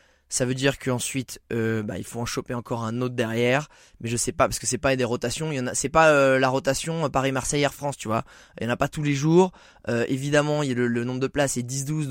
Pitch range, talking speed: 115-140 Hz, 285 wpm